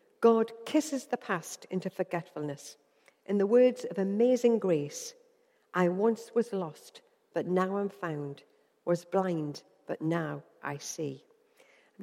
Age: 60-79